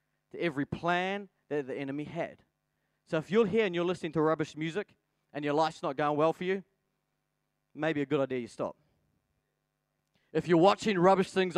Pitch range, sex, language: 155-220 Hz, male, English